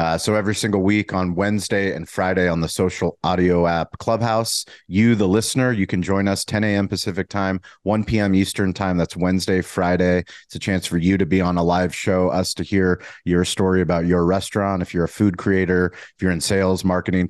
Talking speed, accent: 215 wpm, American